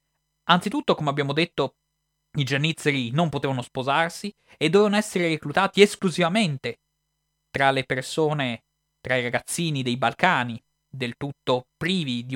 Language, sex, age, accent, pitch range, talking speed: Italian, male, 20-39, native, 130-160 Hz, 125 wpm